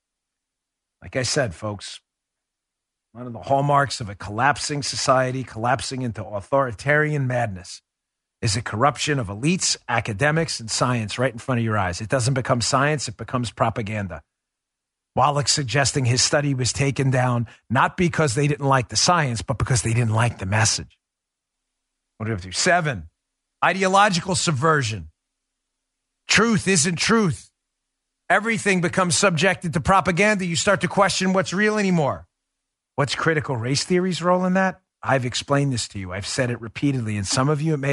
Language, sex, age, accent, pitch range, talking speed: English, male, 40-59, American, 120-155 Hz, 165 wpm